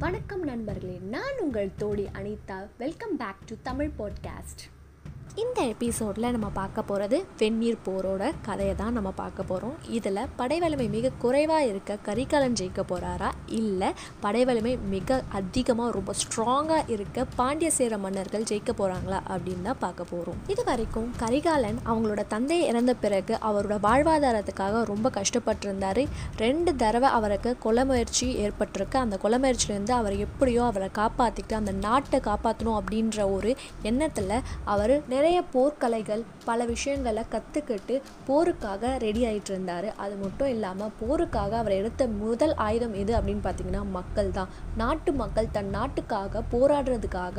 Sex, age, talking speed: female, 20-39, 135 wpm